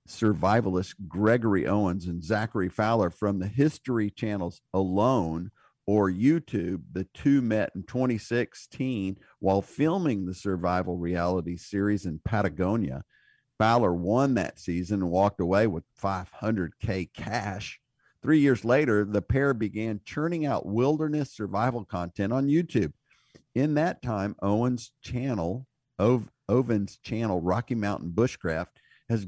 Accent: American